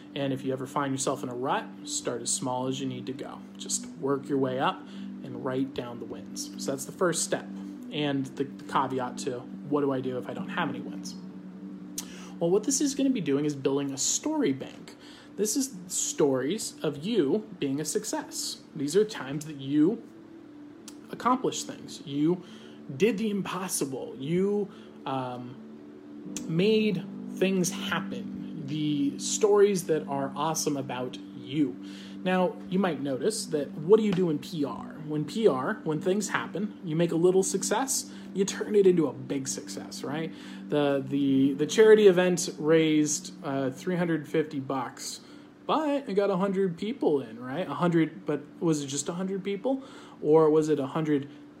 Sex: male